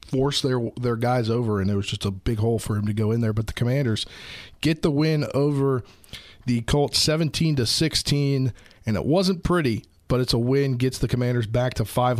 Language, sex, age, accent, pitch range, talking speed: English, male, 40-59, American, 105-130 Hz, 215 wpm